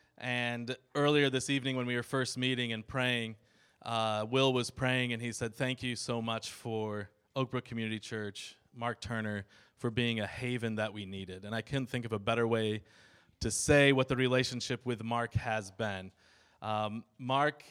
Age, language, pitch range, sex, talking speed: 20-39, English, 115-140 Hz, male, 185 wpm